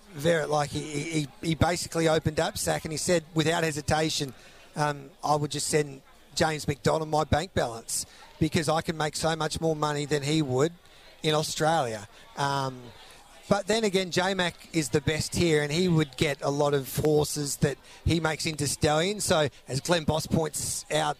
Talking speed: 185 wpm